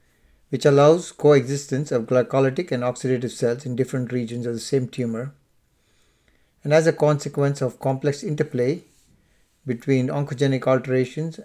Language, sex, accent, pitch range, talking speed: English, male, Indian, 120-145 Hz, 130 wpm